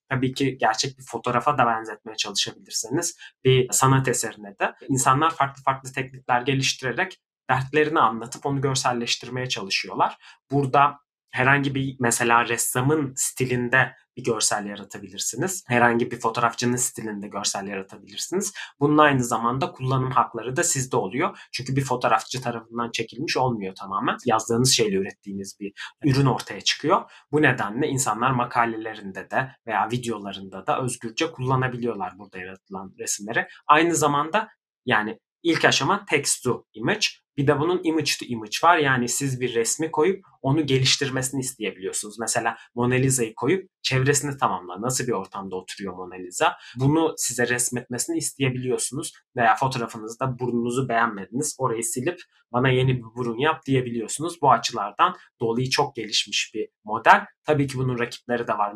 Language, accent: Turkish, native